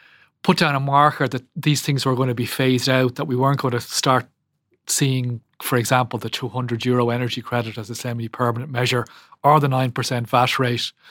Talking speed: 190 wpm